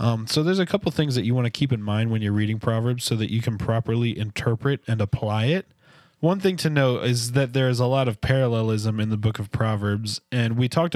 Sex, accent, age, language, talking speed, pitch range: male, American, 20-39, English, 250 wpm, 110-130 Hz